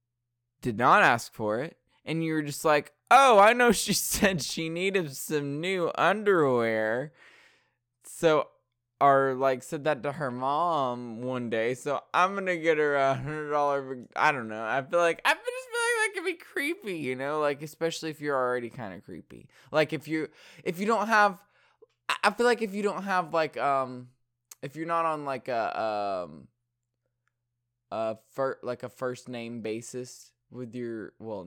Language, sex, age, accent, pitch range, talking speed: English, male, 20-39, American, 120-155 Hz, 180 wpm